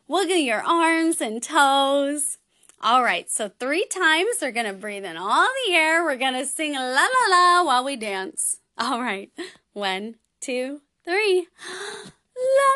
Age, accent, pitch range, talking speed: 20-39, American, 255-370 Hz, 145 wpm